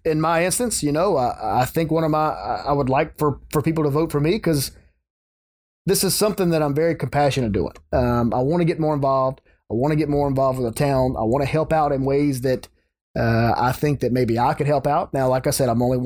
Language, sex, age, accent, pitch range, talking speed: English, male, 30-49, American, 120-155 Hz, 260 wpm